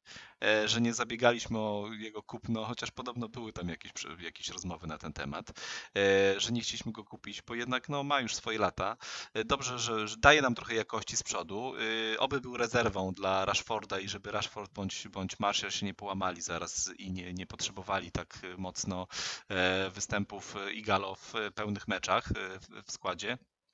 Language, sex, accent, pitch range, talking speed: Polish, male, native, 95-115 Hz, 165 wpm